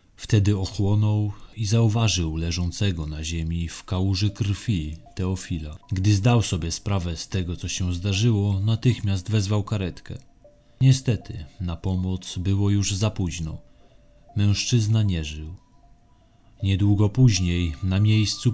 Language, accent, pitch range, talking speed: Polish, native, 90-115 Hz, 120 wpm